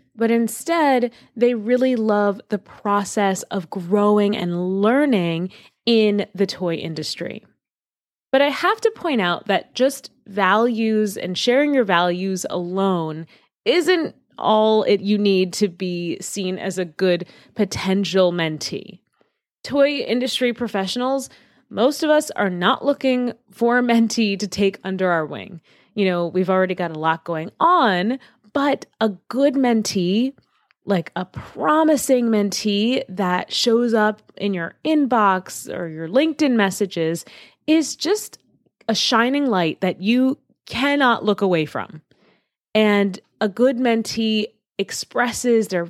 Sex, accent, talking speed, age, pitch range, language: female, American, 135 wpm, 20-39, 185-245 Hz, English